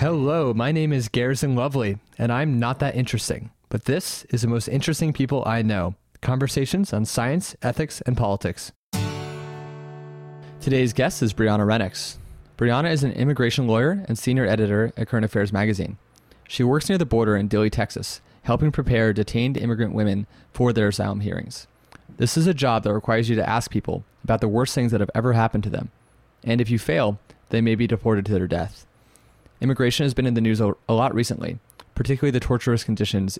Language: English